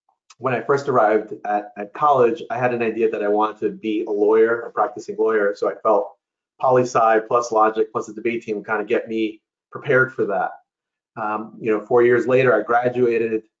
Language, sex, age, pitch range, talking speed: English, male, 30-49, 110-125 Hz, 205 wpm